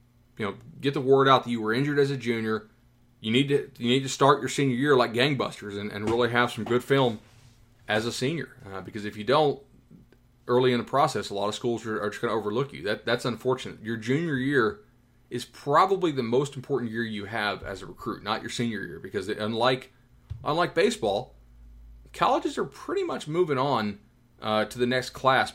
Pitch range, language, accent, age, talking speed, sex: 110-125 Hz, English, American, 30-49, 215 wpm, male